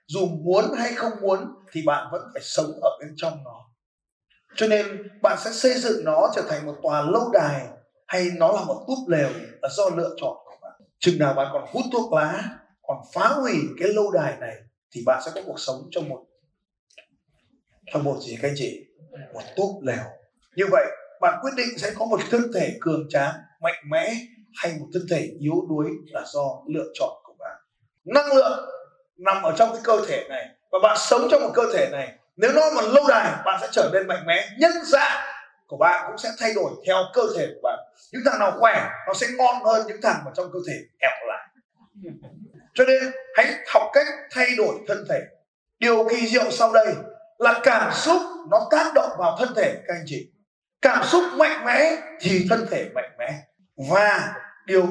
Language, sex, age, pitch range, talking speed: Vietnamese, male, 20-39, 180-275 Hz, 210 wpm